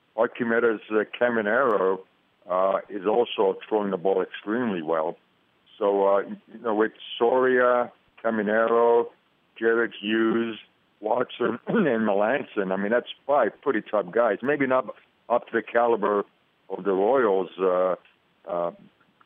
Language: English